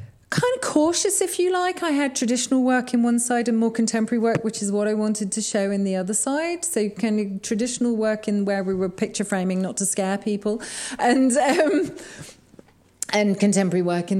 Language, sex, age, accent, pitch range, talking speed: English, female, 40-59, British, 180-235 Hz, 205 wpm